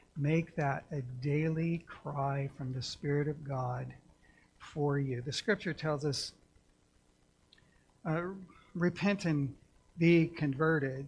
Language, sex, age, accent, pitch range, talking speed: English, male, 60-79, American, 145-170 Hz, 115 wpm